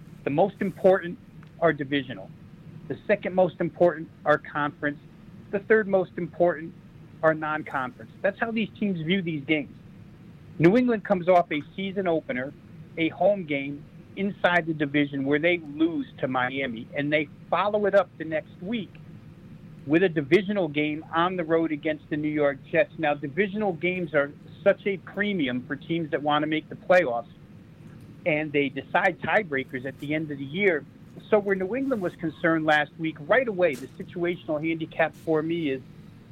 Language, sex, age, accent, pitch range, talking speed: English, male, 50-69, American, 150-180 Hz, 170 wpm